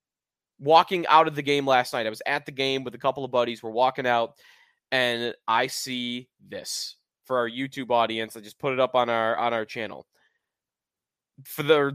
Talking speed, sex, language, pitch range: 200 wpm, male, English, 130-175 Hz